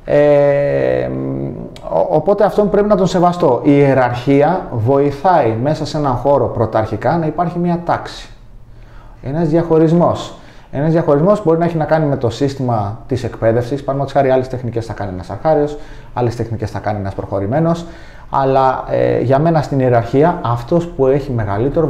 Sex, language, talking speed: male, Greek, 165 wpm